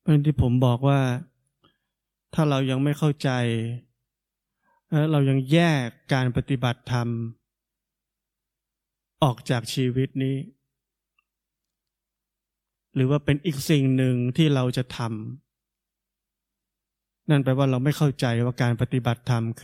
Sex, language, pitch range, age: male, Thai, 120-145 Hz, 20-39